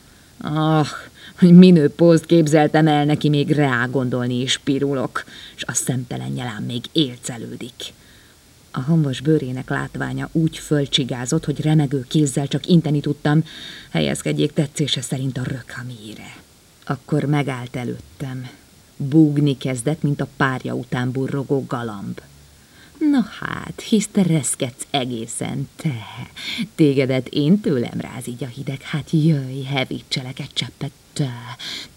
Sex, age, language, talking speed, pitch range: female, 30-49, Hungarian, 120 wpm, 125-150 Hz